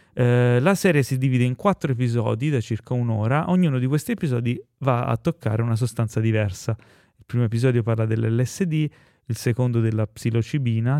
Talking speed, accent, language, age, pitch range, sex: 160 wpm, native, Italian, 30-49, 115-135 Hz, male